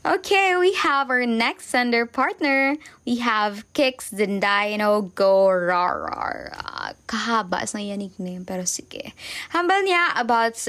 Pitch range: 205-255 Hz